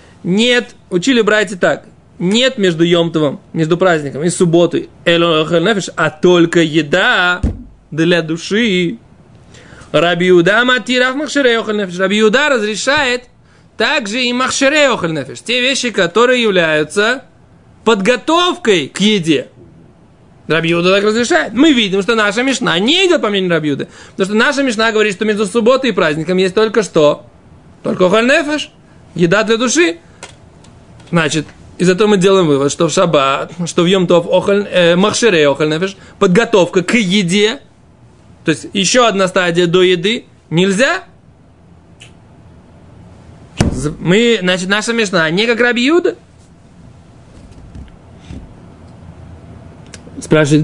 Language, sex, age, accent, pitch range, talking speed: Russian, male, 20-39, native, 160-230 Hz, 115 wpm